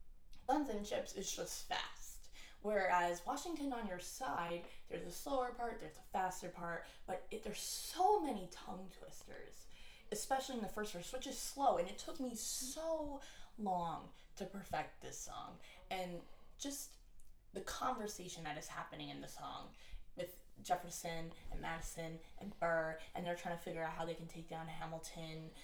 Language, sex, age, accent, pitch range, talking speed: English, female, 20-39, American, 160-205 Hz, 165 wpm